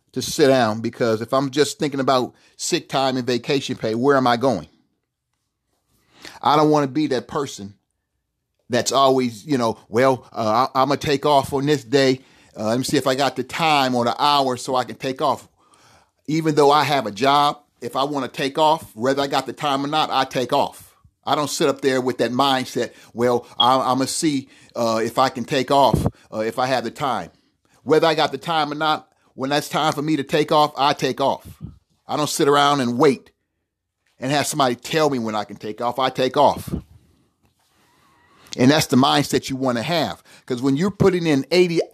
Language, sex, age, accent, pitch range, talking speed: English, male, 40-59, American, 130-155 Hz, 220 wpm